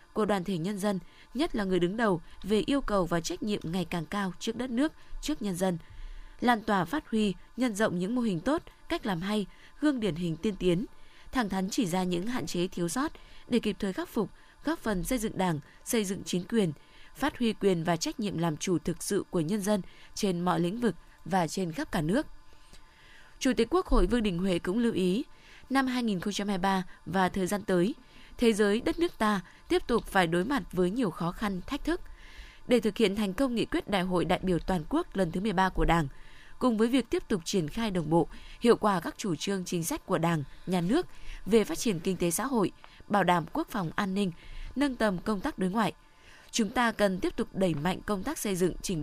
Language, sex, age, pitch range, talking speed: Vietnamese, female, 20-39, 180-230 Hz, 230 wpm